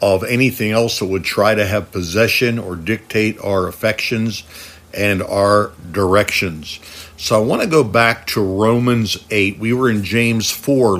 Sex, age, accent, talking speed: male, 60-79, American, 165 wpm